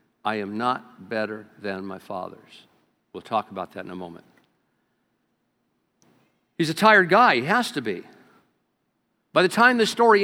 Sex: male